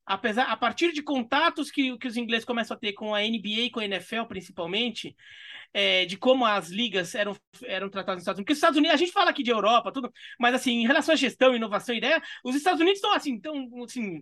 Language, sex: Portuguese, male